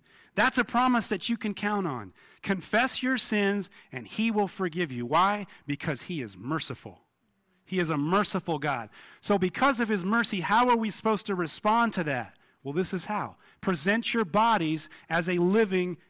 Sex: male